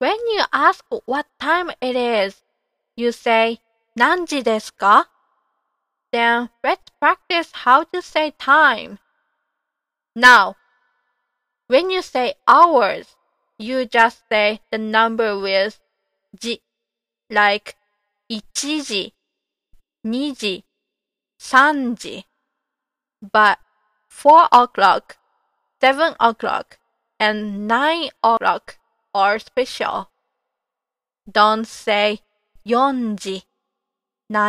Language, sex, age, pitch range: Japanese, female, 20-39, 210-290 Hz